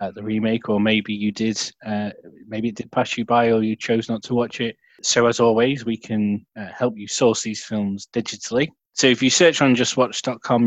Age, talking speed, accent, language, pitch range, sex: 20-39, 215 wpm, British, English, 100-125 Hz, male